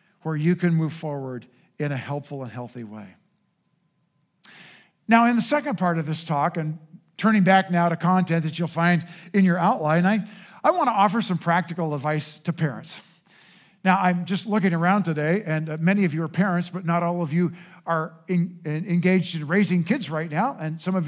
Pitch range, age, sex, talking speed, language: 165-200 Hz, 50-69, male, 190 wpm, English